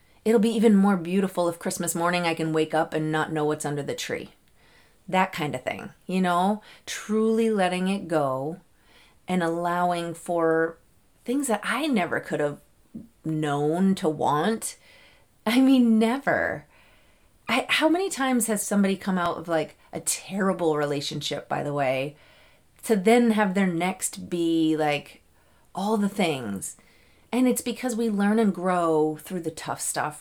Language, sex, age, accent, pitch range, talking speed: English, female, 30-49, American, 155-205 Hz, 160 wpm